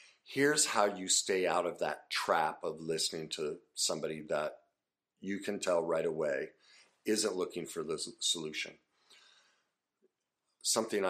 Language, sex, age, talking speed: English, male, 50-69, 130 wpm